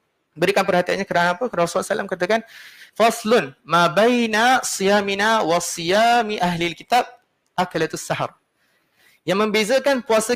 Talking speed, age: 110 wpm, 30-49